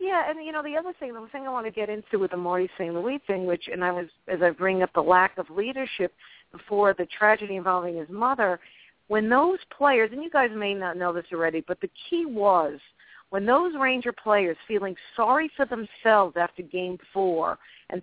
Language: English